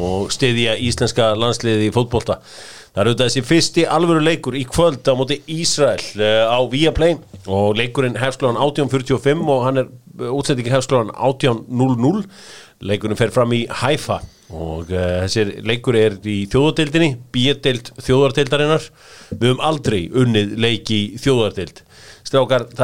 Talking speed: 140 wpm